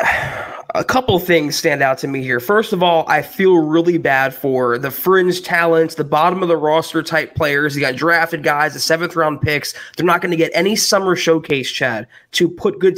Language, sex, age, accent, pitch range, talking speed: English, male, 20-39, American, 155-180 Hz, 215 wpm